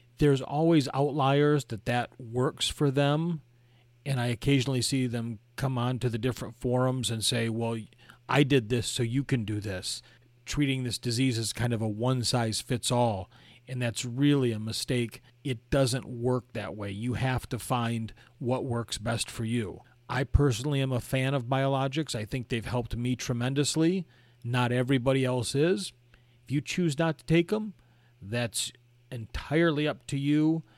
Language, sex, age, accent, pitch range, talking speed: English, male, 40-59, American, 115-130 Hz, 170 wpm